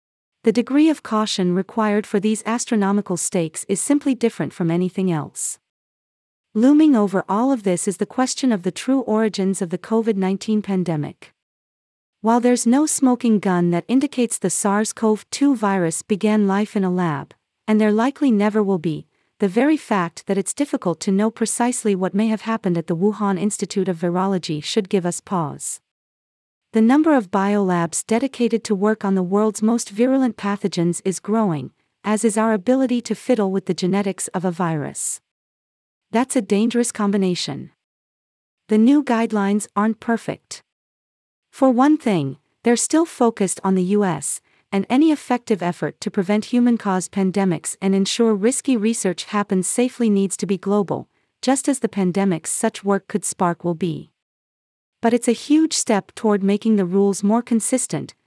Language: English